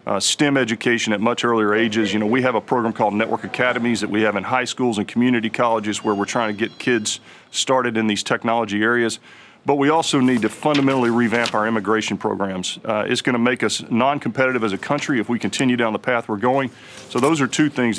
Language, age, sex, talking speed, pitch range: English, 40-59, male, 230 wpm, 110-130 Hz